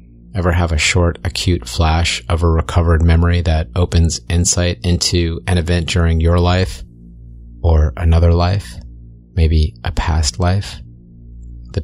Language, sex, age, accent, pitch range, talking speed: English, male, 30-49, American, 80-90 Hz, 135 wpm